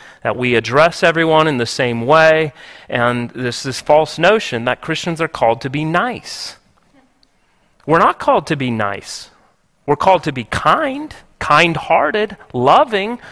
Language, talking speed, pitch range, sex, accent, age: English, 150 wpm, 150-205 Hz, male, American, 30-49